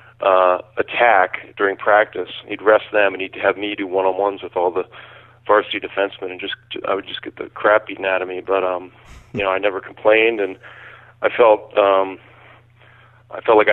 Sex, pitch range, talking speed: male, 95-120 Hz, 190 wpm